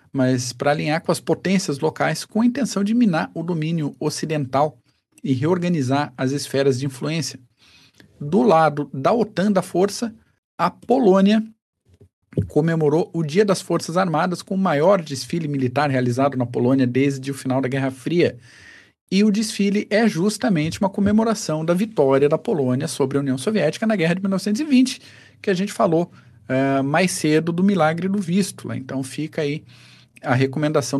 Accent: Brazilian